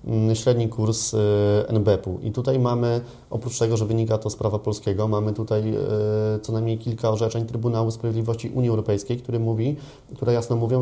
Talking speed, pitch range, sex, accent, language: 150 wpm, 105-120 Hz, male, native, Polish